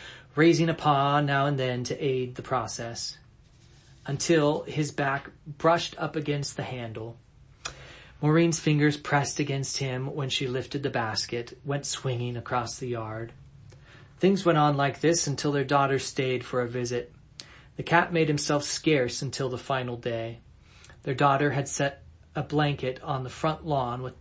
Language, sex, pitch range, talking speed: English, male, 125-145 Hz, 160 wpm